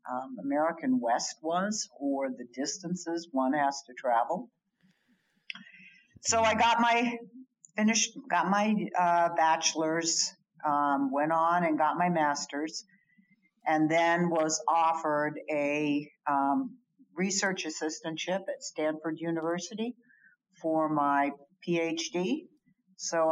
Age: 60-79